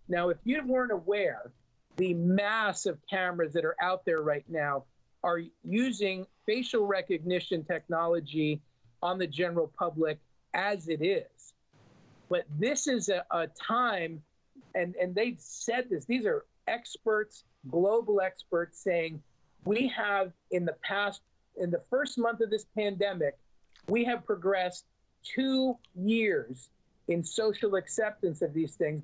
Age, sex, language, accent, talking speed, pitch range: 50-69, male, English, American, 140 wpm, 170-220 Hz